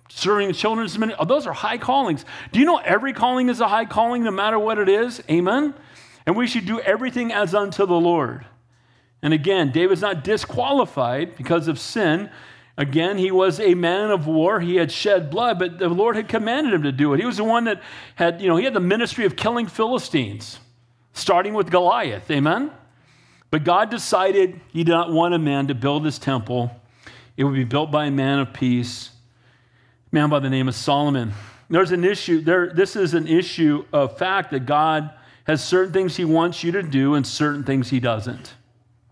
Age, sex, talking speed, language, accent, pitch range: 40-59, male, 200 wpm, English, American, 140-230 Hz